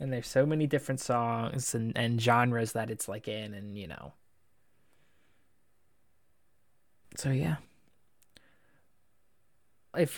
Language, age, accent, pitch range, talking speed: English, 20-39, American, 120-150 Hz, 110 wpm